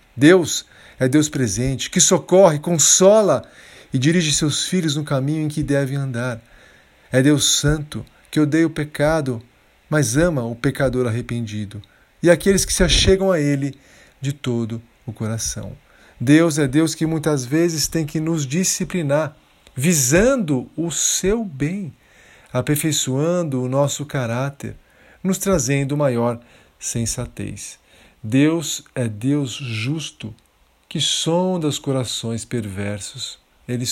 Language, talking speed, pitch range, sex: Portuguese, 125 wpm, 120-160 Hz, male